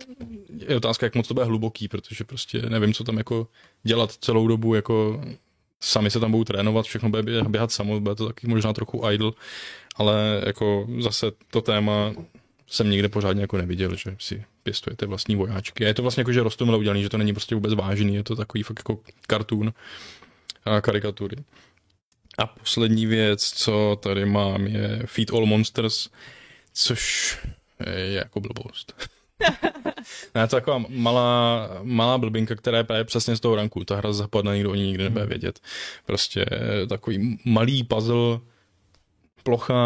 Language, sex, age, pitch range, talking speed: Czech, male, 20-39, 105-120 Hz, 165 wpm